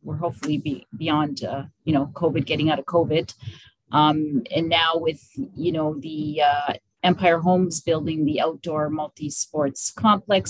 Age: 30-49